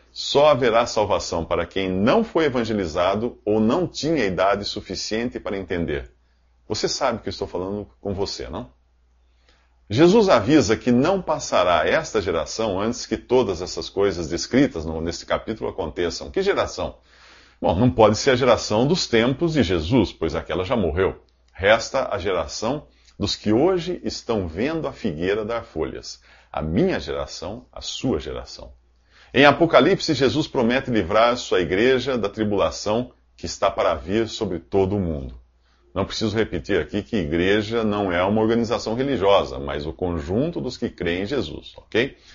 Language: English